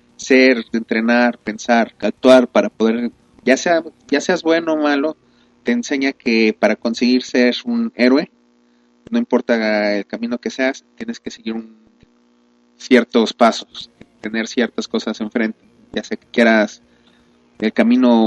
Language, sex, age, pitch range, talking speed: Spanish, male, 30-49, 110-150 Hz, 140 wpm